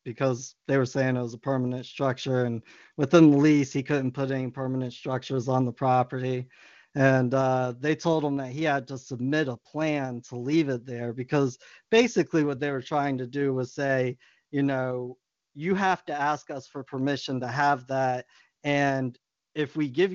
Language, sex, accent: English, male, American